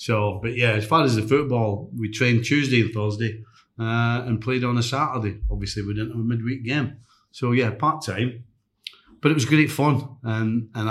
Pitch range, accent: 105-125 Hz, British